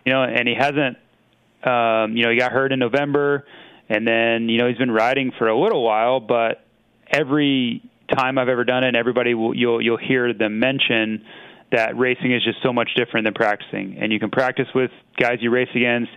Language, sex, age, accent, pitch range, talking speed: English, male, 20-39, American, 110-130 Hz, 210 wpm